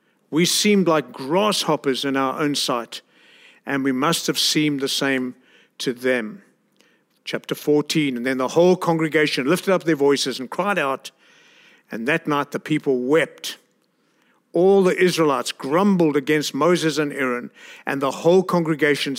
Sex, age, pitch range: male, 50-69, 145-190 Hz